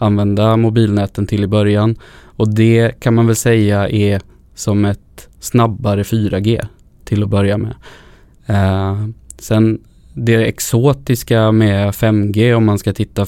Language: Swedish